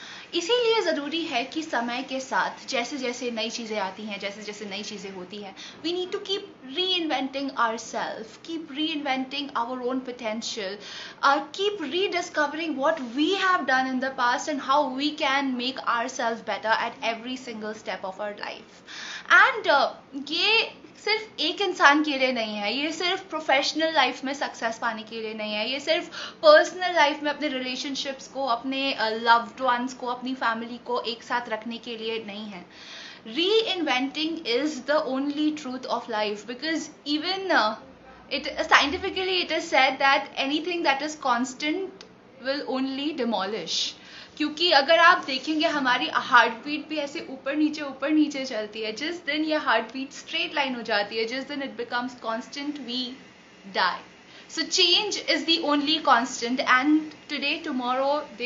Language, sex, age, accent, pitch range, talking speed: Hindi, female, 20-39, native, 235-305 Hz, 170 wpm